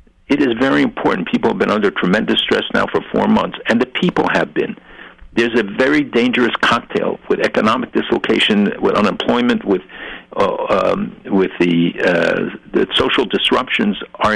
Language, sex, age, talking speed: English, male, 60-79, 165 wpm